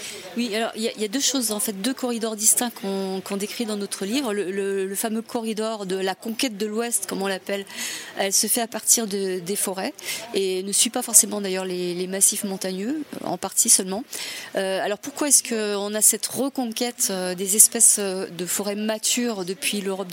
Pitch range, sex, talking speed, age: 195-245 Hz, female, 205 wpm, 30-49